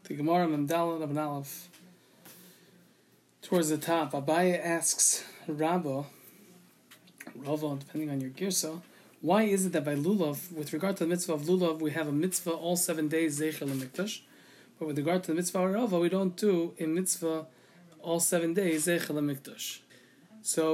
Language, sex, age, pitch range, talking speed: English, male, 20-39, 155-185 Hz, 165 wpm